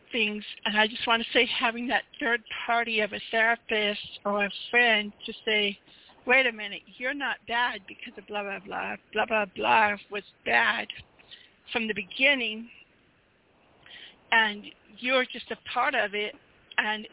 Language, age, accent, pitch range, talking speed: English, 50-69, American, 215-250 Hz, 160 wpm